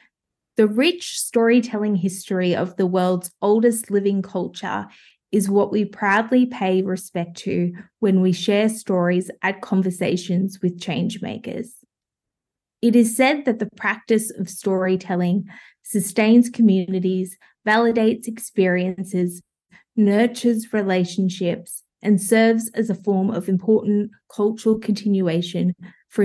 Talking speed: 115 wpm